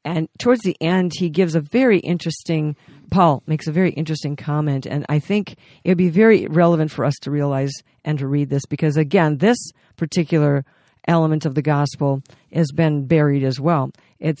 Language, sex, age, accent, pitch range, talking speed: English, female, 50-69, American, 150-180 Hz, 185 wpm